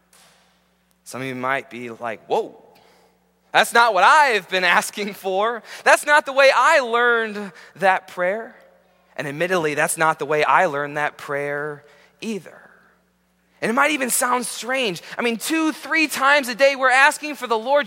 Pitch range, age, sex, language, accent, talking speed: 160-255 Hz, 20-39, male, English, American, 170 wpm